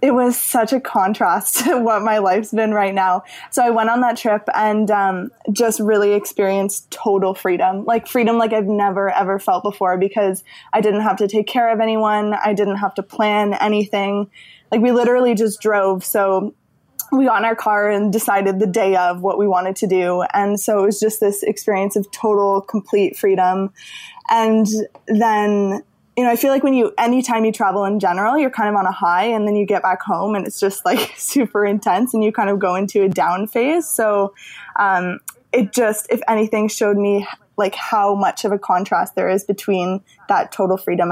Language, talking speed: English, 205 wpm